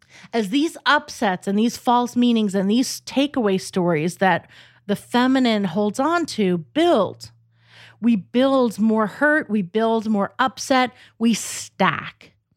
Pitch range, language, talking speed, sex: 180-235 Hz, English, 135 wpm, female